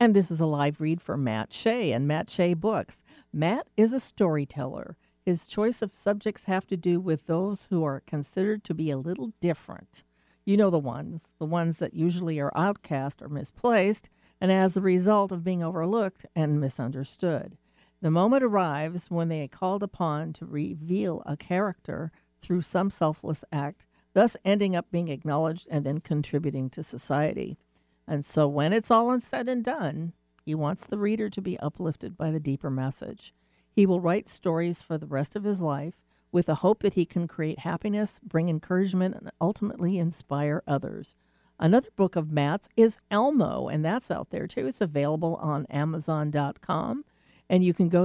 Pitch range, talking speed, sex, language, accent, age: 150-195 Hz, 180 wpm, female, English, American, 50-69